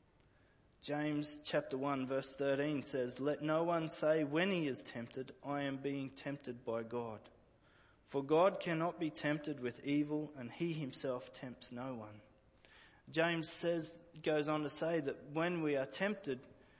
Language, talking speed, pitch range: English, 155 wpm, 130-165 Hz